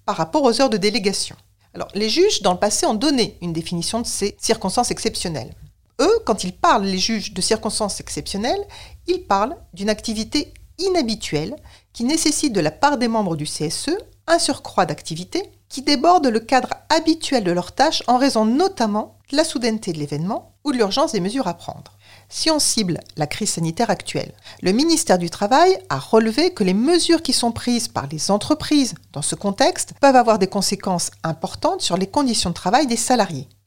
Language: French